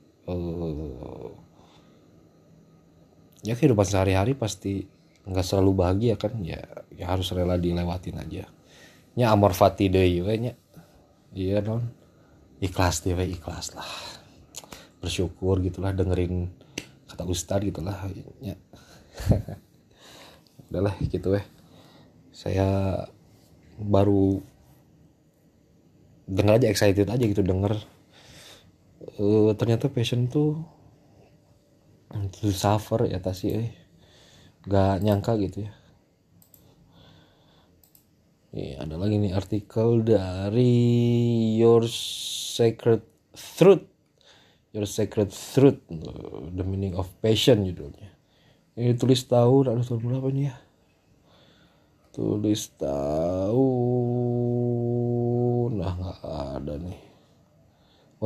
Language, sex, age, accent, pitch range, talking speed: Indonesian, male, 30-49, native, 95-115 Hz, 90 wpm